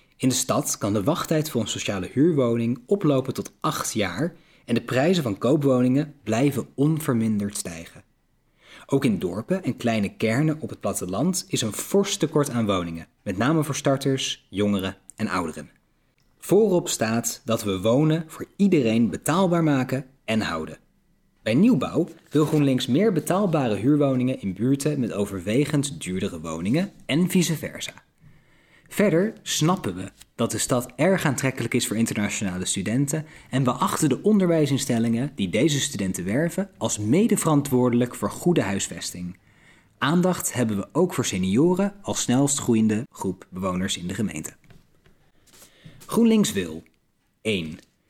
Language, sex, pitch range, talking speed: Dutch, male, 105-155 Hz, 145 wpm